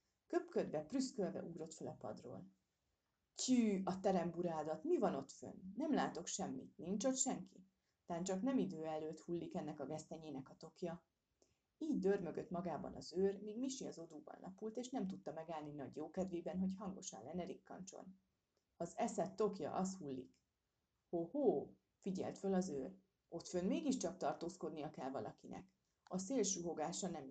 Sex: female